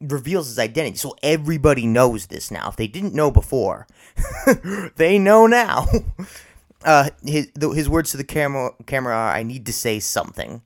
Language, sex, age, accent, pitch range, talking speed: English, male, 30-49, American, 110-170 Hz, 175 wpm